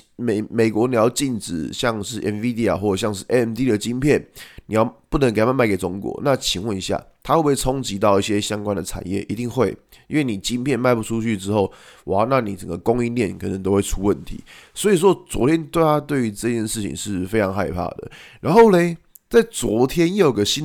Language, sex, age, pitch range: Chinese, male, 20-39, 105-155 Hz